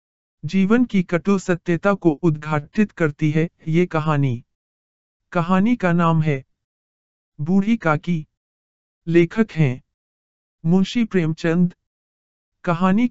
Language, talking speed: Hindi, 95 wpm